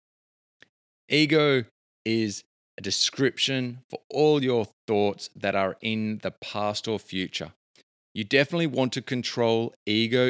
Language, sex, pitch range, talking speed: English, male, 105-130 Hz, 120 wpm